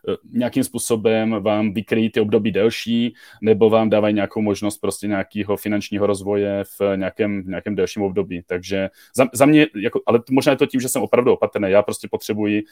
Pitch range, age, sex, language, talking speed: 105-115 Hz, 30-49, male, Czech, 190 wpm